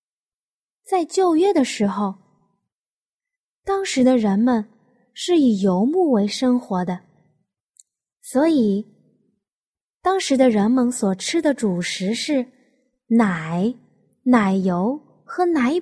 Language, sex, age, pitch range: Chinese, female, 20-39, 205-310 Hz